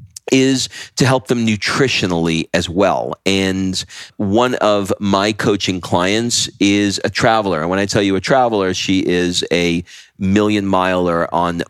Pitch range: 90-110 Hz